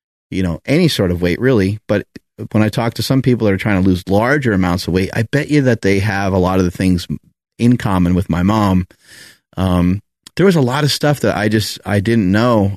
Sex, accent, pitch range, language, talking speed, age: male, American, 95-110 Hz, English, 245 wpm, 30-49